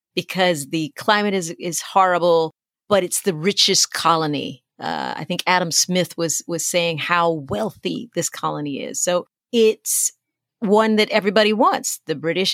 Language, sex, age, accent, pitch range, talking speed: English, female, 40-59, American, 165-210 Hz, 155 wpm